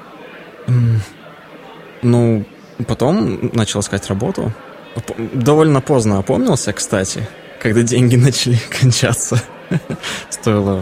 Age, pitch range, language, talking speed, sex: 20-39, 100-120 Hz, Russian, 80 wpm, male